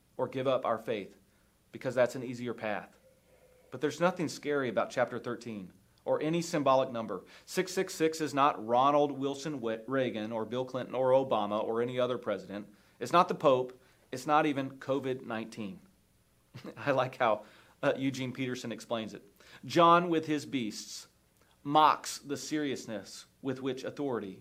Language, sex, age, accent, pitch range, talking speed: English, male, 40-59, American, 115-150 Hz, 150 wpm